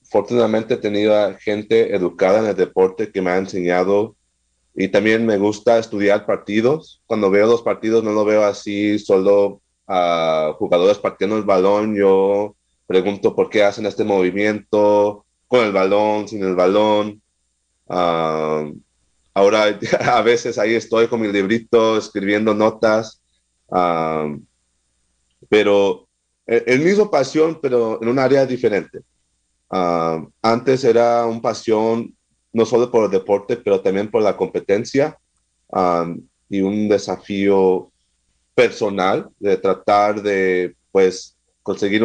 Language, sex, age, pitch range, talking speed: English, male, 30-49, 85-110 Hz, 130 wpm